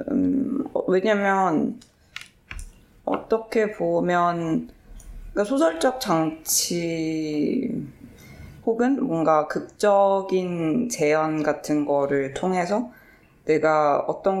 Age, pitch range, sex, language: 20-39, 145-195 Hz, female, Korean